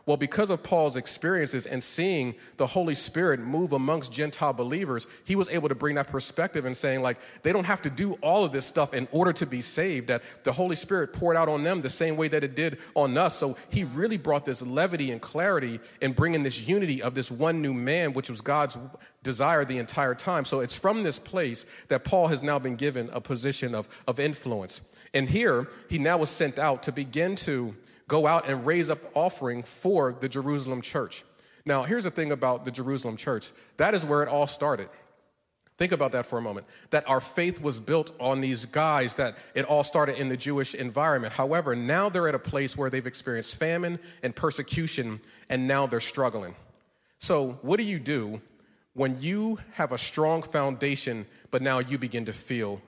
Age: 40-59